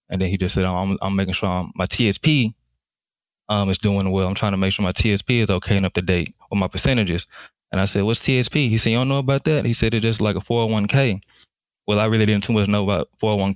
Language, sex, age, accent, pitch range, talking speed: English, male, 20-39, American, 95-105 Hz, 260 wpm